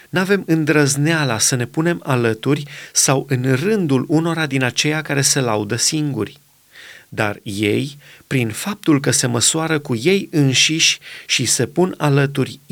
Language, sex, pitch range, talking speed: Romanian, male, 125-155 Hz, 140 wpm